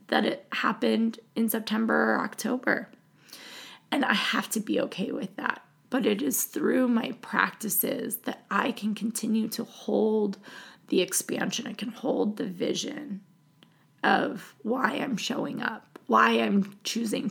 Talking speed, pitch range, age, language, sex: 145 wpm, 205-250 Hz, 20-39, English, female